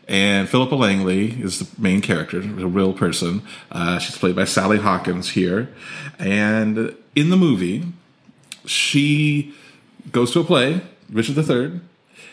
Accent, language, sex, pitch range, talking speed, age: American, English, male, 95-140 Hz, 135 wpm, 40-59